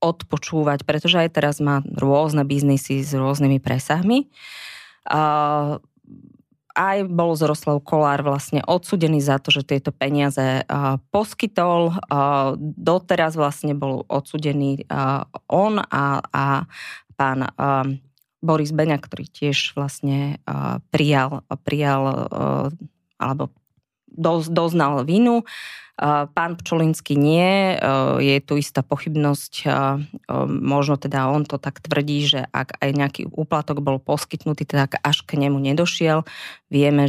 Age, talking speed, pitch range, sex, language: 20-39, 105 wpm, 140-155 Hz, female, Slovak